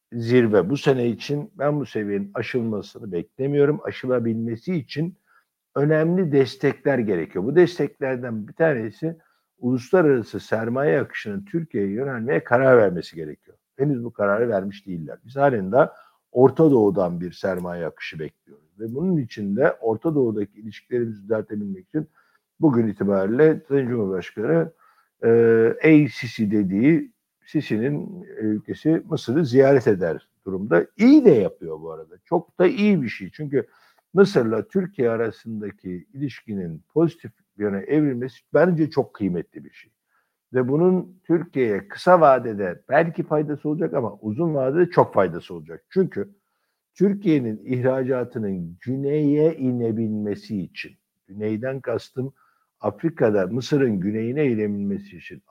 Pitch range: 110-155 Hz